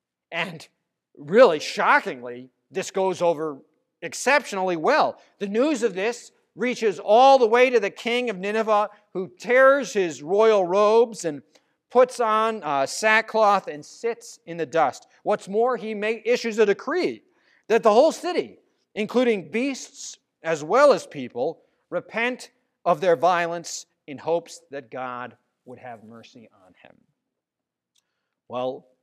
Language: English